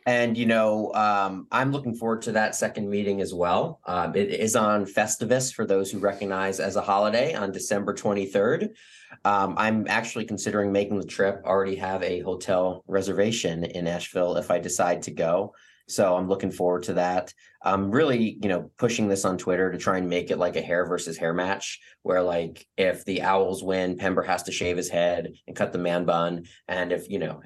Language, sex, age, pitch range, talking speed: English, male, 30-49, 90-105 Hz, 205 wpm